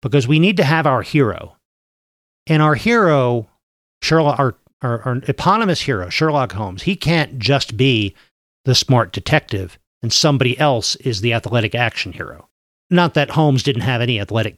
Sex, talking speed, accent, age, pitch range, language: male, 160 wpm, American, 40-59, 110-145 Hz, English